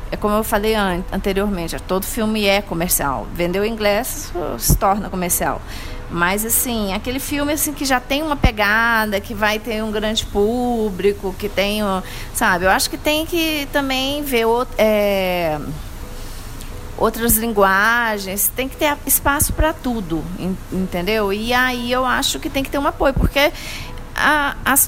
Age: 30-49